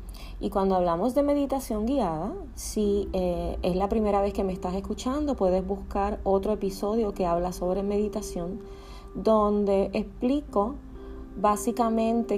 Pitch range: 175-225 Hz